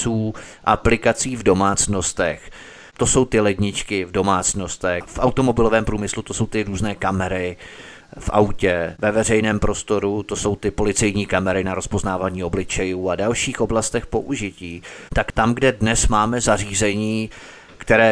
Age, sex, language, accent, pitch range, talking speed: 30-49, male, Czech, native, 100-120 Hz, 135 wpm